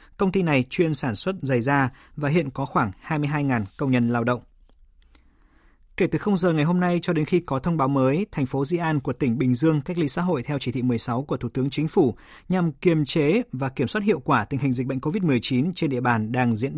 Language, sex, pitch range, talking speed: Vietnamese, male, 125-165 Hz, 250 wpm